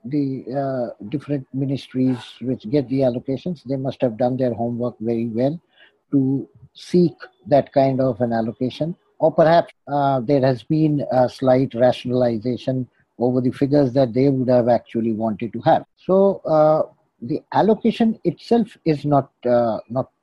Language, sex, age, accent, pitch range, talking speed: English, male, 50-69, Indian, 130-175 Hz, 150 wpm